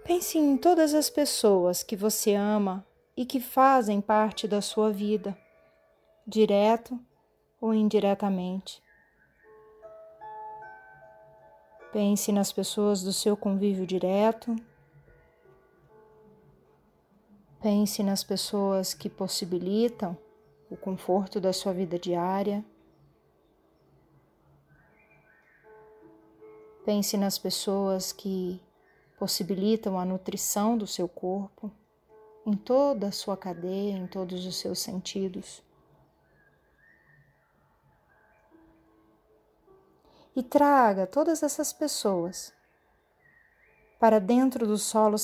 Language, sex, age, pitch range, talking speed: Portuguese, female, 30-49, 185-220 Hz, 85 wpm